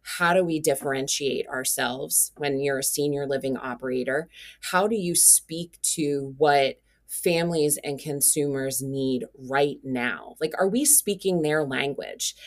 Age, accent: 20-39, American